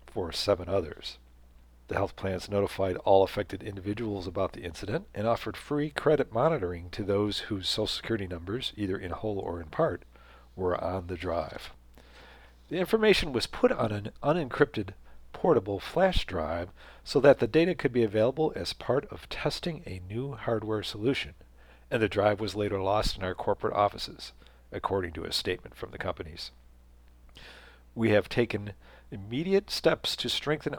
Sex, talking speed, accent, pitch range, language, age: male, 160 wpm, American, 85-115 Hz, English, 40-59